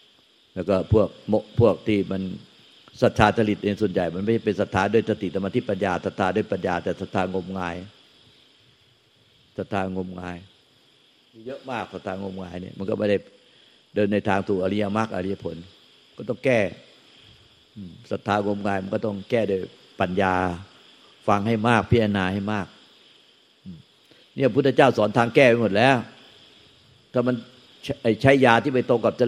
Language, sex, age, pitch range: Thai, male, 50-69, 95-115 Hz